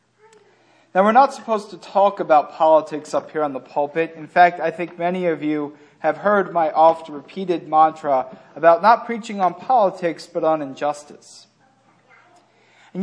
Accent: American